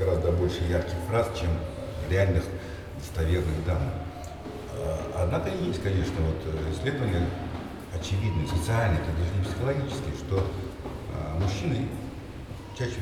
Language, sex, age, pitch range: English, male, 50-69, 85-105 Hz